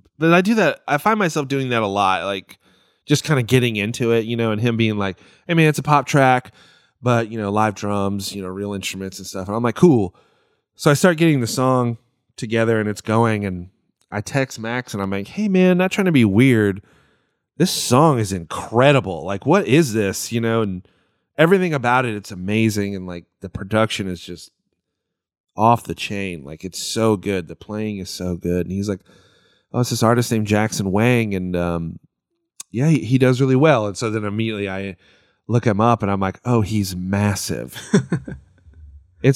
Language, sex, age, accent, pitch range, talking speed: English, male, 30-49, American, 100-130 Hz, 205 wpm